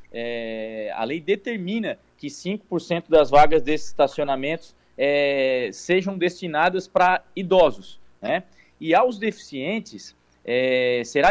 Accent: Brazilian